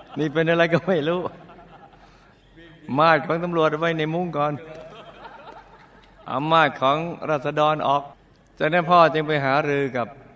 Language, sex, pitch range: Thai, male, 125-155 Hz